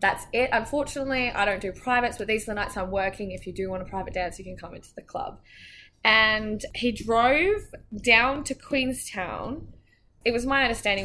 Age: 10-29